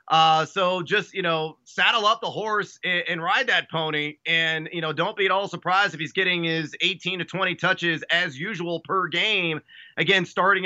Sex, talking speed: male, 195 wpm